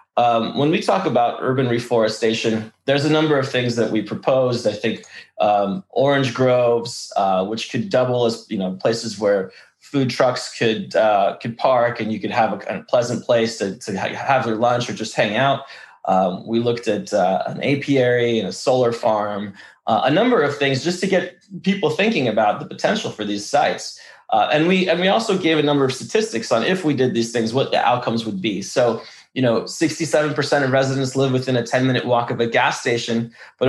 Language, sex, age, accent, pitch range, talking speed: English, male, 20-39, American, 115-145 Hz, 215 wpm